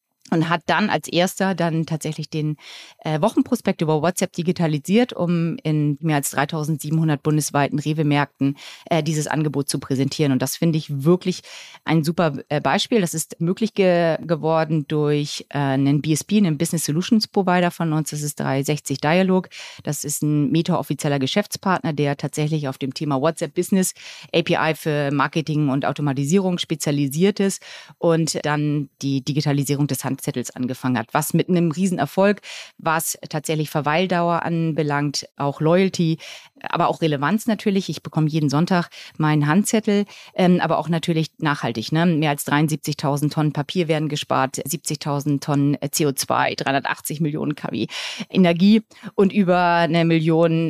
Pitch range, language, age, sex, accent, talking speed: 145-175 Hz, German, 30-49, female, German, 145 wpm